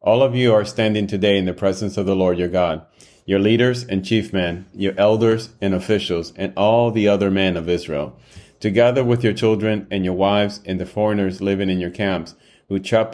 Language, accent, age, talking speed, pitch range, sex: English, American, 30-49, 210 wpm, 95-110 Hz, male